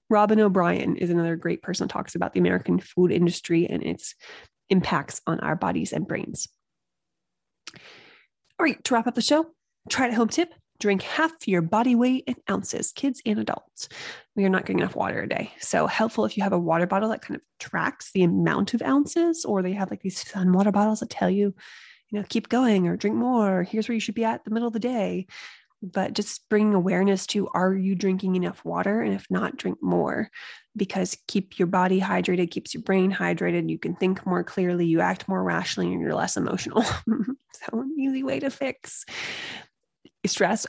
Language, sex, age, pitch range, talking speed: English, female, 20-39, 180-225 Hz, 205 wpm